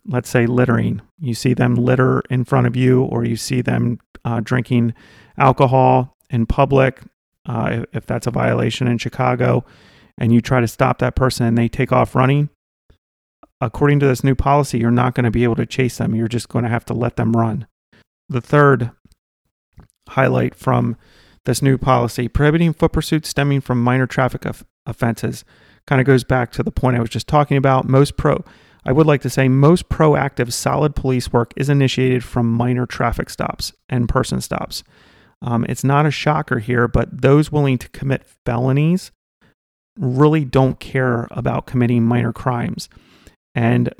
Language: English